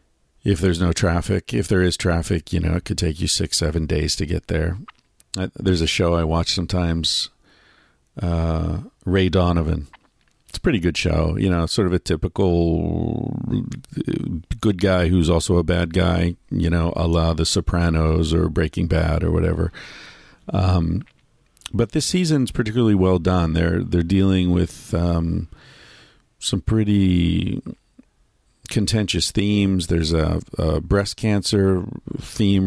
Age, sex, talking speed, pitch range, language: 50-69, male, 150 wpm, 85-100 Hz, English